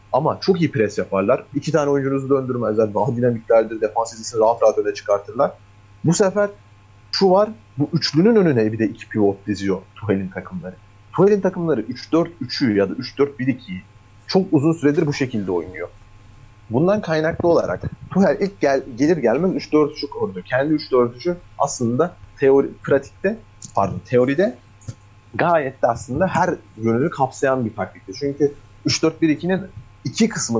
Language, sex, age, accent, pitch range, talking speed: Turkish, male, 40-59, native, 105-160 Hz, 140 wpm